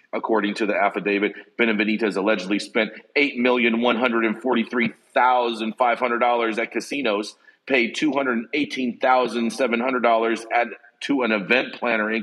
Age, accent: 40-59, American